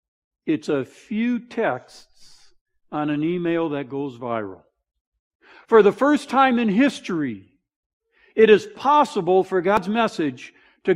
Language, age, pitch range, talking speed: English, 60-79, 175-245 Hz, 125 wpm